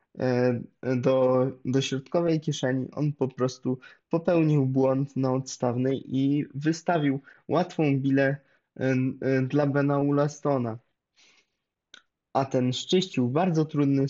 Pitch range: 130-150 Hz